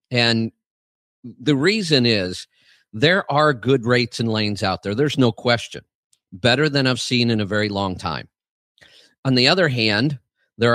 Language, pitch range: English, 110-140 Hz